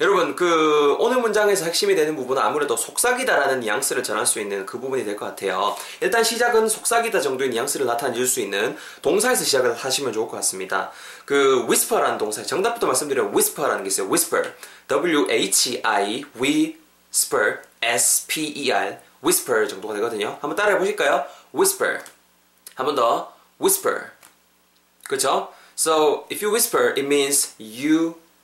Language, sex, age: Korean, male, 20-39